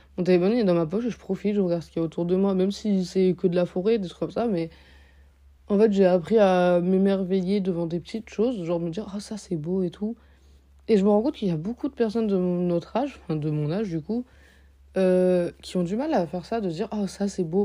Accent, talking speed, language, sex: French, 305 wpm, French, female